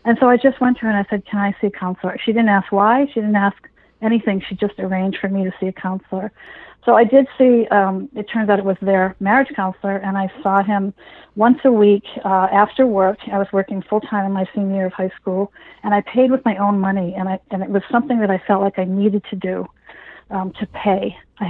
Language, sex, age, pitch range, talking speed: English, female, 40-59, 195-230 Hz, 250 wpm